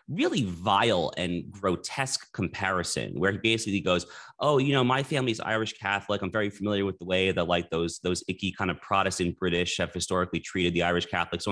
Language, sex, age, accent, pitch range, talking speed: English, male, 30-49, American, 90-100 Hz, 200 wpm